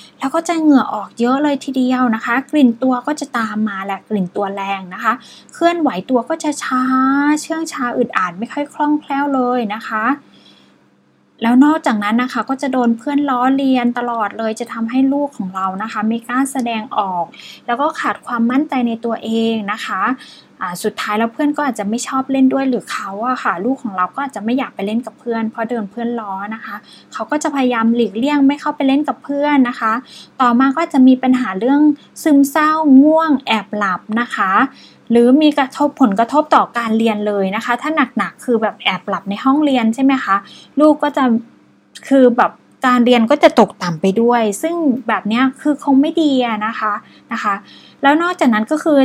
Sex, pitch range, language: female, 215-270 Hz, Thai